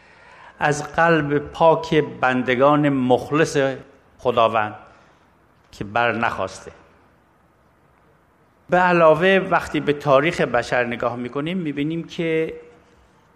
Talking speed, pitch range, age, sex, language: 85 wpm, 120-160 Hz, 50-69, male, Persian